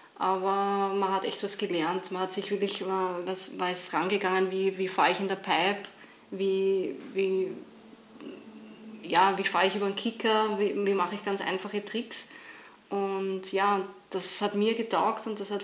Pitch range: 190-215 Hz